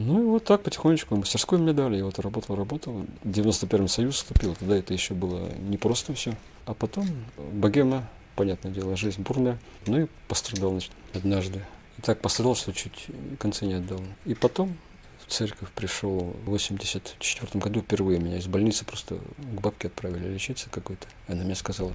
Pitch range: 95-115 Hz